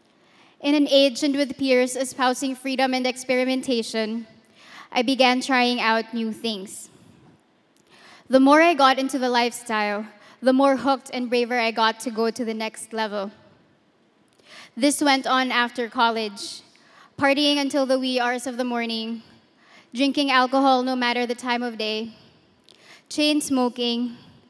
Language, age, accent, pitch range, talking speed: English, 20-39, Filipino, 230-265 Hz, 145 wpm